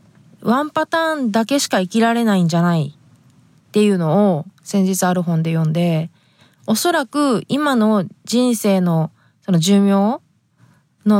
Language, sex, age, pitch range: Japanese, female, 20-39, 170-255 Hz